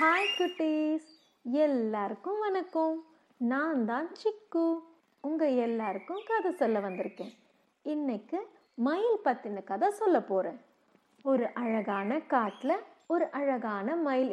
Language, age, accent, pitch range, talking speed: Tamil, 30-49, native, 225-310 Hz, 100 wpm